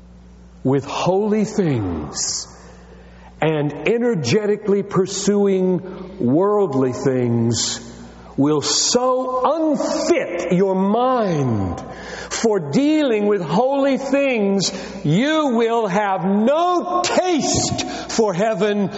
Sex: male